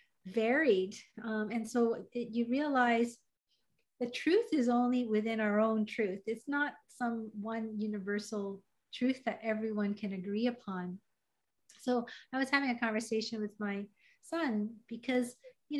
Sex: female